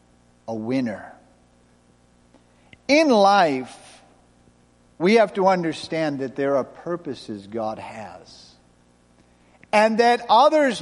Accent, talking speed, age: American, 95 wpm, 50-69